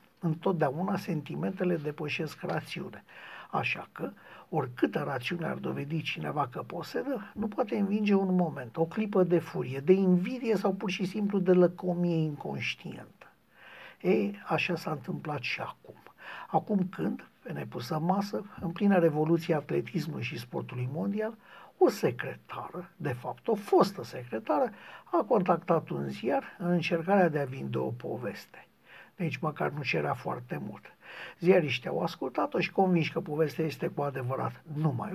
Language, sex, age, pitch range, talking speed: Romanian, male, 60-79, 160-200 Hz, 145 wpm